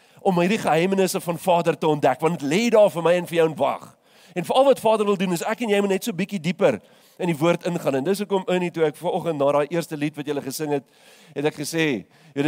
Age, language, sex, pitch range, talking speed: 40-59, English, male, 140-190 Hz, 275 wpm